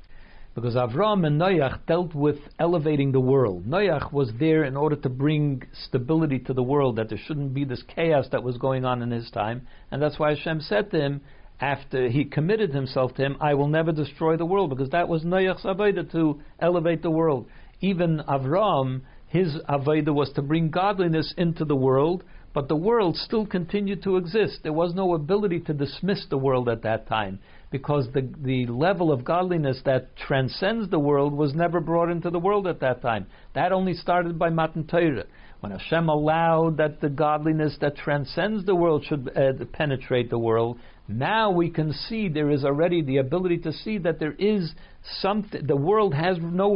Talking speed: 190 wpm